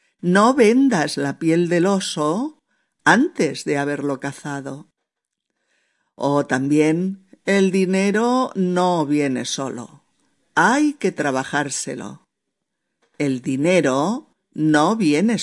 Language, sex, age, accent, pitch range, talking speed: Spanish, female, 50-69, Spanish, 145-215 Hz, 95 wpm